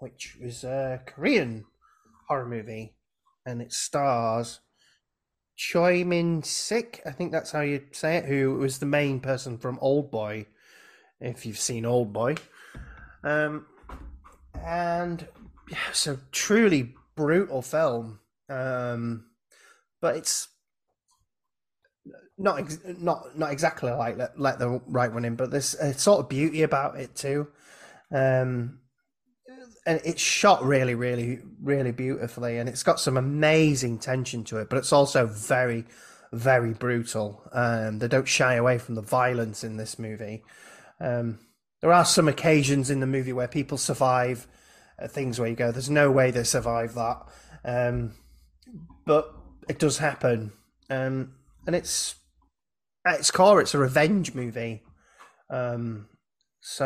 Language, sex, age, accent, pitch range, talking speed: English, male, 20-39, British, 115-150 Hz, 140 wpm